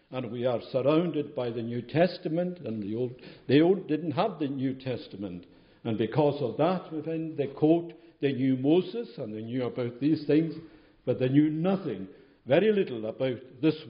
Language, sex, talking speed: English, male, 180 wpm